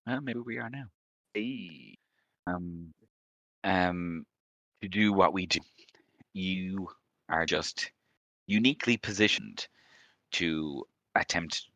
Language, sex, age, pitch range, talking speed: English, male, 20-39, 75-90 Hz, 105 wpm